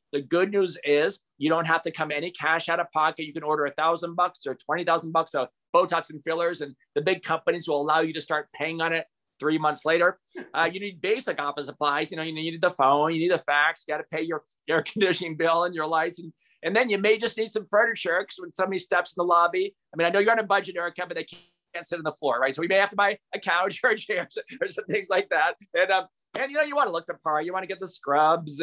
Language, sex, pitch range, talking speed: English, male, 155-185 Hz, 285 wpm